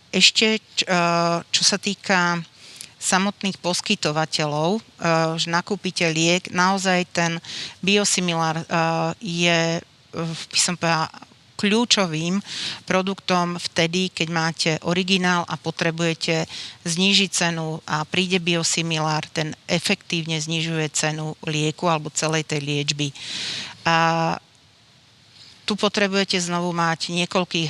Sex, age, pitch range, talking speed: female, 40-59, 160-180 Hz, 90 wpm